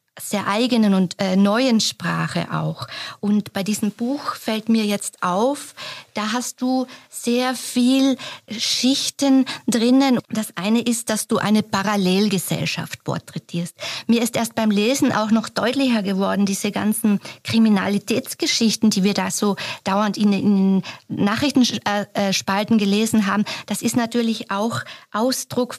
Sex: female